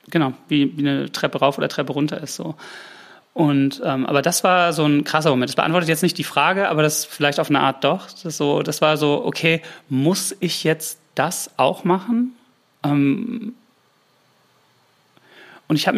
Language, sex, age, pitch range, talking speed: German, male, 30-49, 145-175 Hz, 185 wpm